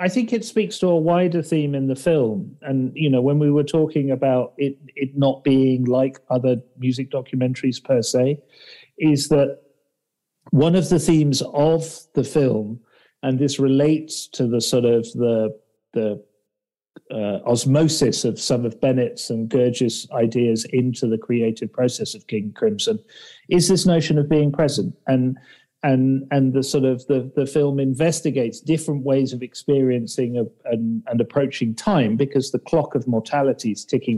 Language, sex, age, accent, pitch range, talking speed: English, male, 40-59, British, 125-160 Hz, 165 wpm